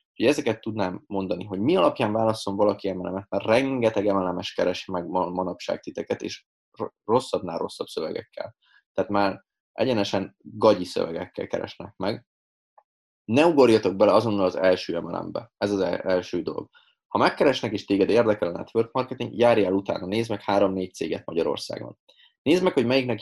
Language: Hungarian